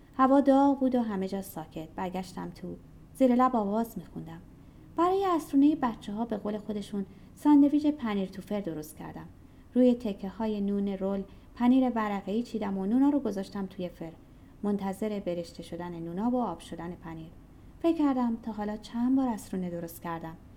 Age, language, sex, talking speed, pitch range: 30-49, Persian, female, 165 wpm, 190-260 Hz